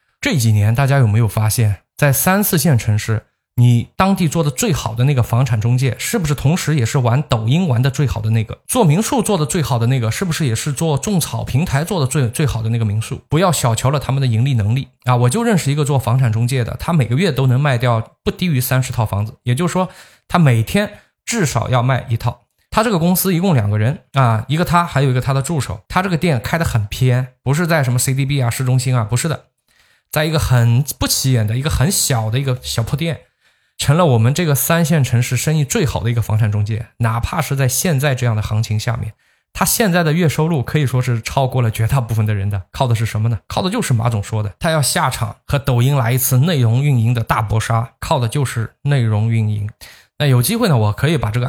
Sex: male